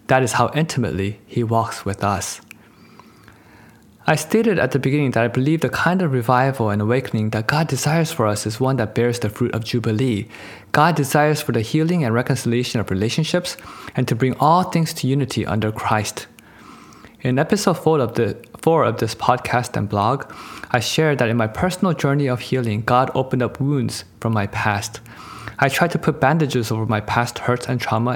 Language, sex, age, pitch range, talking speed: English, male, 20-39, 110-140 Hz, 190 wpm